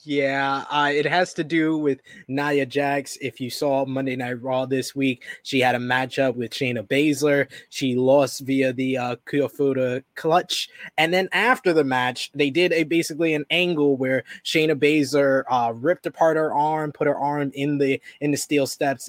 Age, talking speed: 20-39, 185 wpm